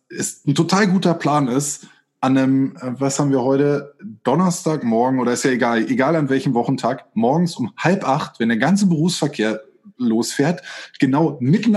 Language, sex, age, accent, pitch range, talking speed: German, male, 20-39, German, 135-170 Hz, 165 wpm